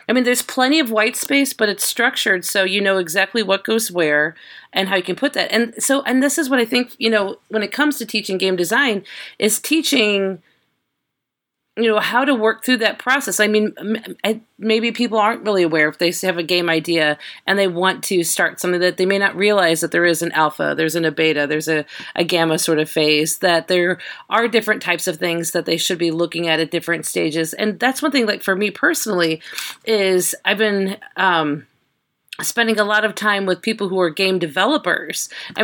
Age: 40-59